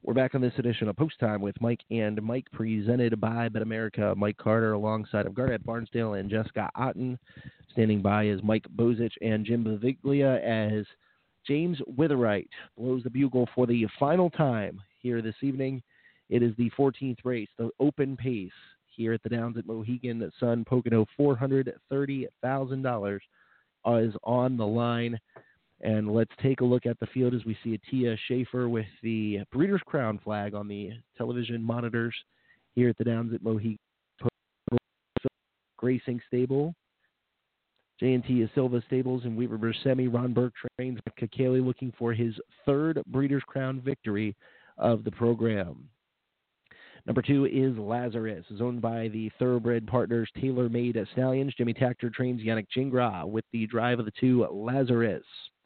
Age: 30-49